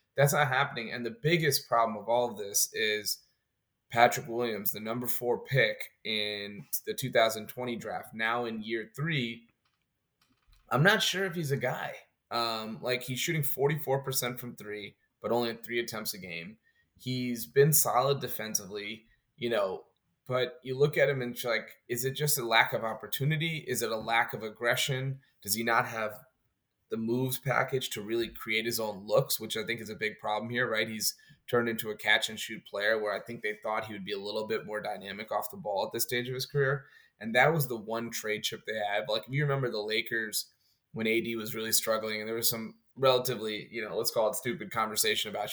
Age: 20-39